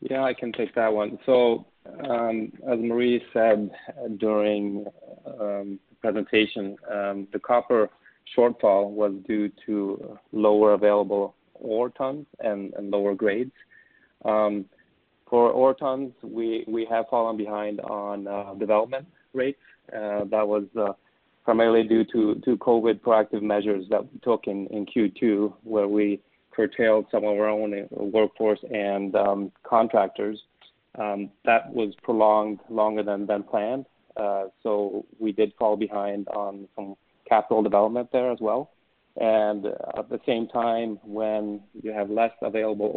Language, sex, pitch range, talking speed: English, male, 105-115 Hz, 140 wpm